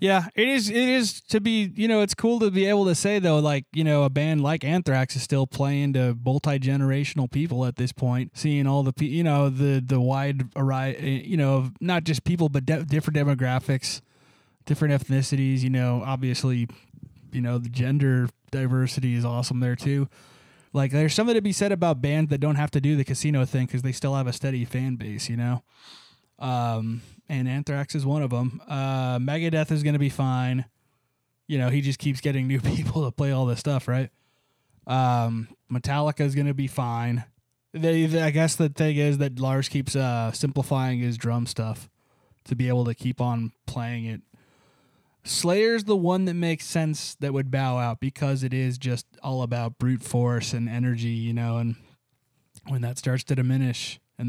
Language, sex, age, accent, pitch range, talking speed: English, male, 20-39, American, 125-150 Hz, 195 wpm